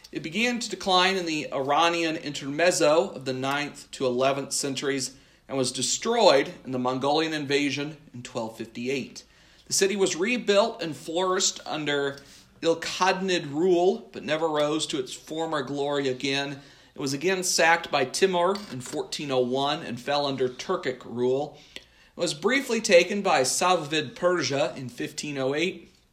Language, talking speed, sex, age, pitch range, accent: English, 140 wpm, male, 40-59, 130-170 Hz, American